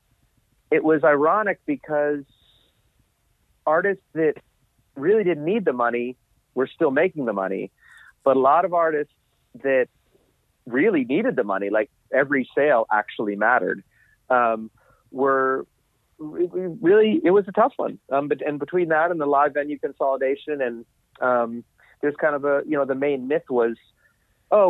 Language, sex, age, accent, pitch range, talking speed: English, male, 40-59, American, 125-160 Hz, 155 wpm